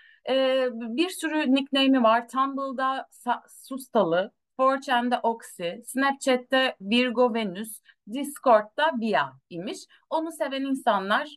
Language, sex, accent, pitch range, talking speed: Turkish, female, native, 185-270 Hz, 100 wpm